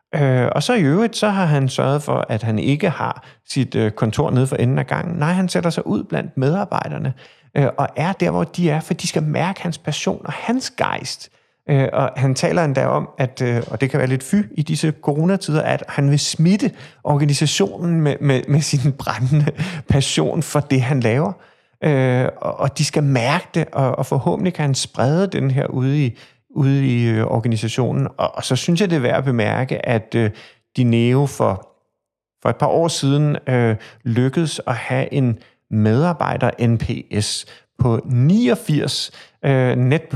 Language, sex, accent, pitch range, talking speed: Danish, male, native, 120-155 Hz, 175 wpm